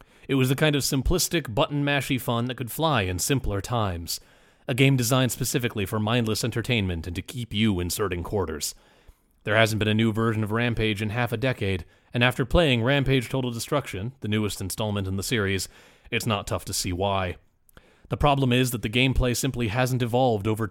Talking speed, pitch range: 195 wpm, 100-125 Hz